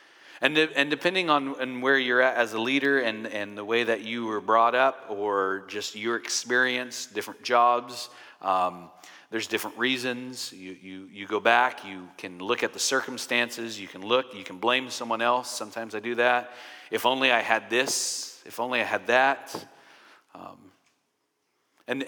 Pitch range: 105-130 Hz